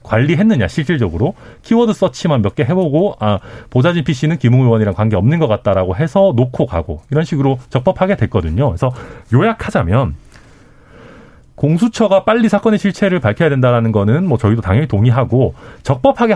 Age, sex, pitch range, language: 40-59, male, 115-190 Hz, Korean